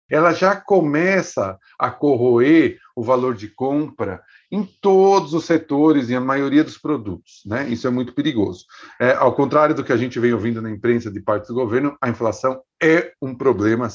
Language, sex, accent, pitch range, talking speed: Portuguese, male, Brazilian, 110-160 Hz, 185 wpm